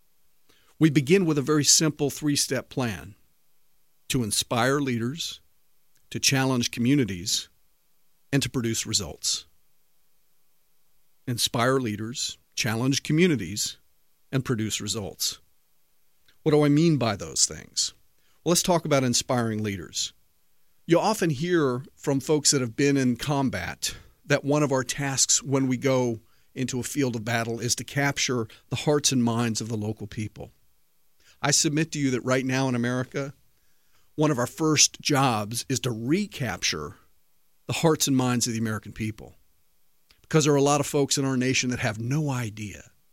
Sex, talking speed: male, 155 wpm